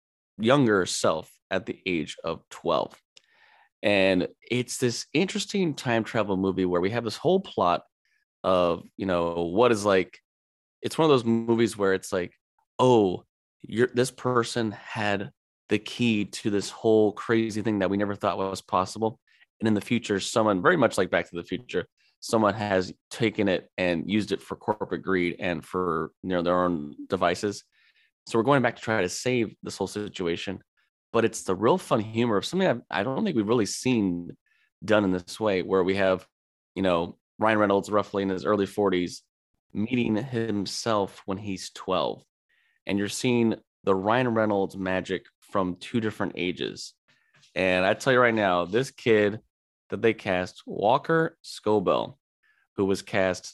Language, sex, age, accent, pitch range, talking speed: English, male, 20-39, American, 95-115 Hz, 175 wpm